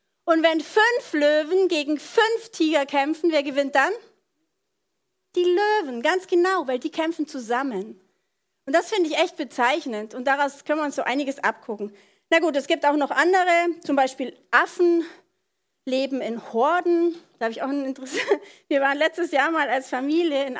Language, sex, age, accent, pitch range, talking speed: German, female, 40-59, German, 265-345 Hz, 175 wpm